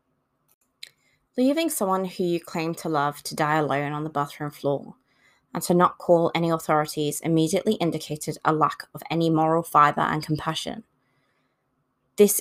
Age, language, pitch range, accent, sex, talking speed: 20-39, English, 150-180 Hz, British, female, 150 wpm